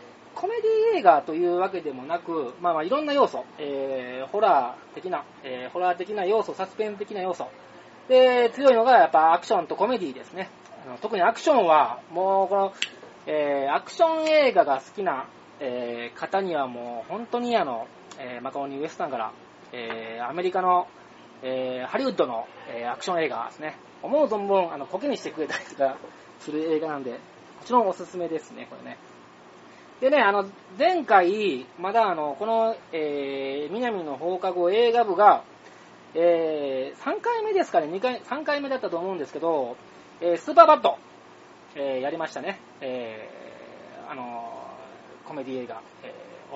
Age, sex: 20-39, male